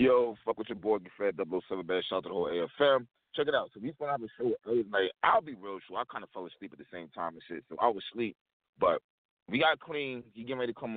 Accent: American